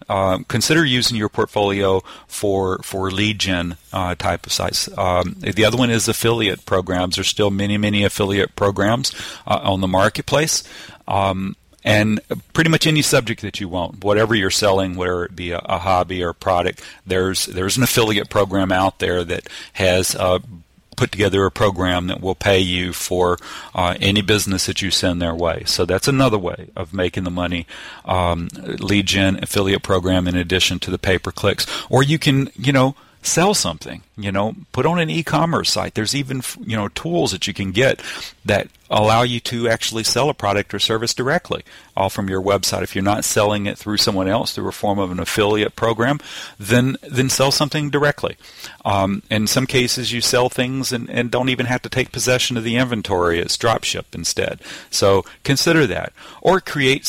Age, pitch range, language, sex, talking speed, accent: 40-59, 95-120 Hz, English, male, 190 wpm, American